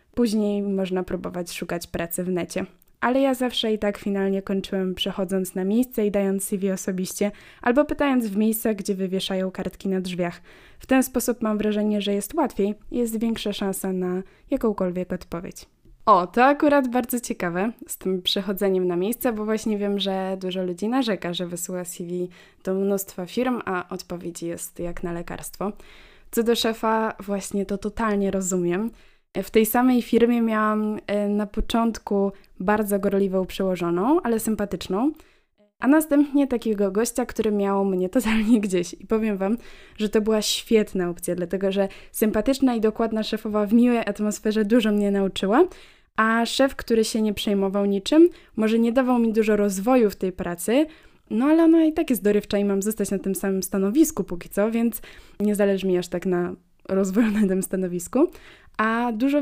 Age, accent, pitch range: 20-39, native, 190-230 Hz